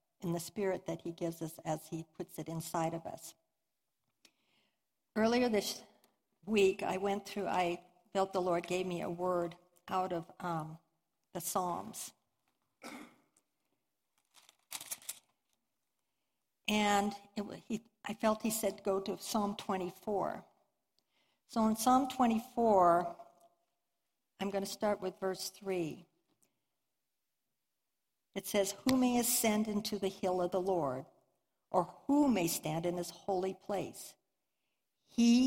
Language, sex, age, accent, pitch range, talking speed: English, female, 60-79, American, 175-210 Hz, 125 wpm